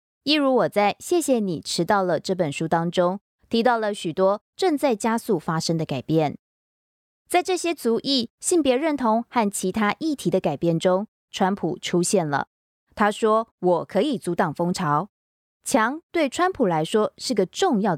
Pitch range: 175-260 Hz